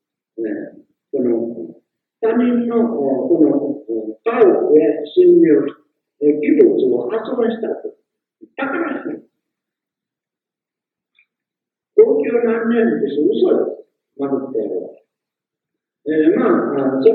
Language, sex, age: Japanese, male, 50-69